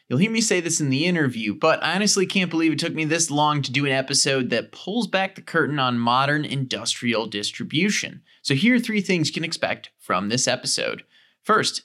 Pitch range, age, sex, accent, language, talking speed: 130-165 Hz, 20-39, male, American, English, 220 wpm